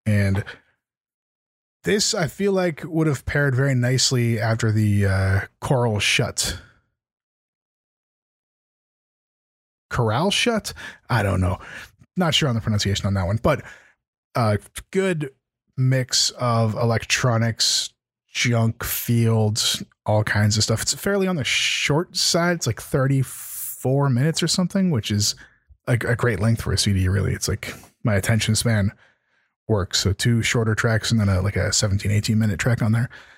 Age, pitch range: 20-39, 105-130 Hz